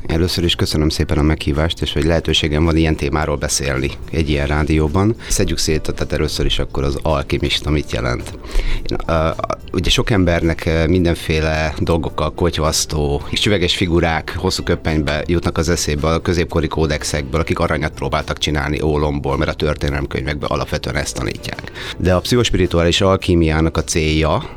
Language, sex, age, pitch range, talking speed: Hungarian, male, 30-49, 75-90 Hz, 155 wpm